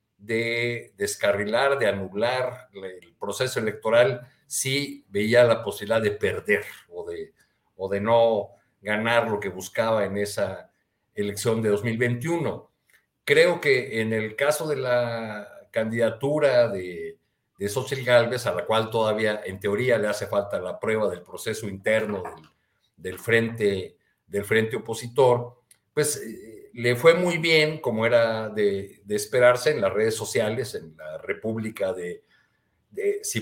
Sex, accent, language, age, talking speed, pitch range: male, Mexican, Spanish, 50-69, 140 wpm, 105-140 Hz